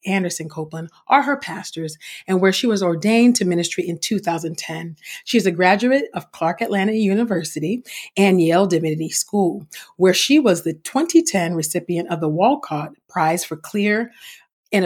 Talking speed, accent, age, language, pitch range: 160 wpm, American, 40-59, English, 165-220 Hz